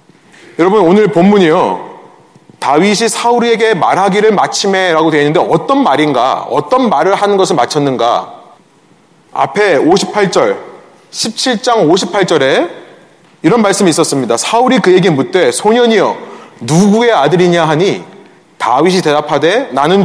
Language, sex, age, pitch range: Korean, male, 30-49, 170-235 Hz